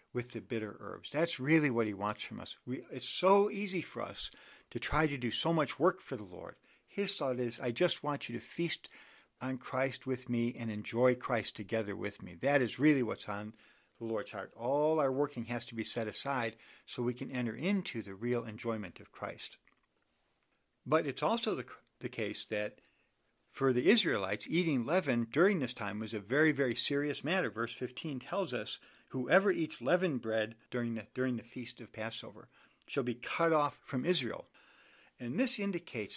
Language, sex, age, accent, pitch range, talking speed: English, male, 60-79, American, 120-165 Hz, 190 wpm